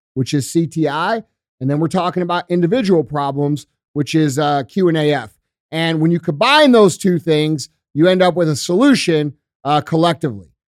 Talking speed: 165 wpm